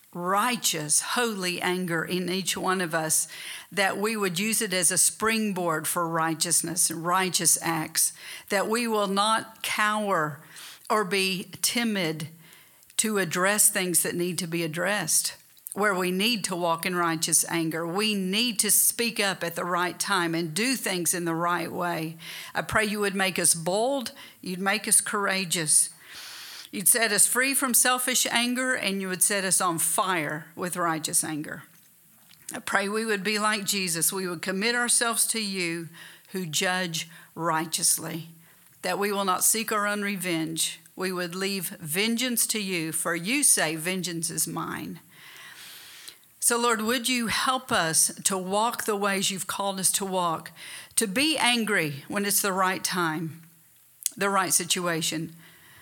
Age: 50-69